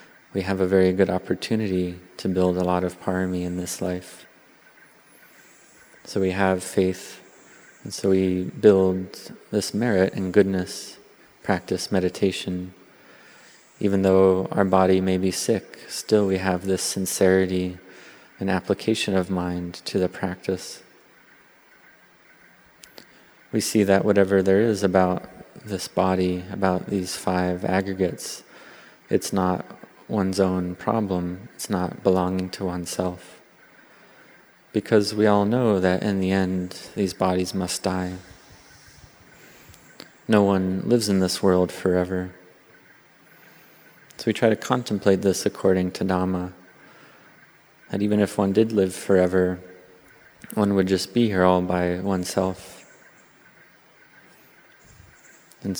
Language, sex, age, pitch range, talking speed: English, male, 30-49, 90-95 Hz, 125 wpm